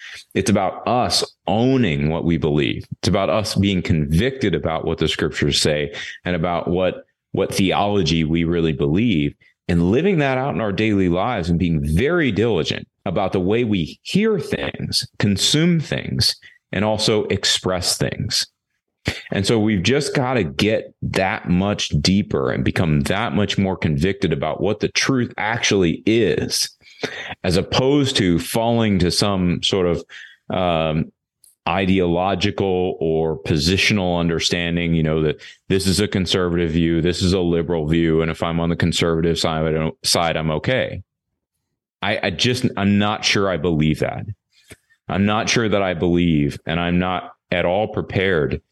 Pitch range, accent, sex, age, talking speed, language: 80-100 Hz, American, male, 30-49, 160 wpm, English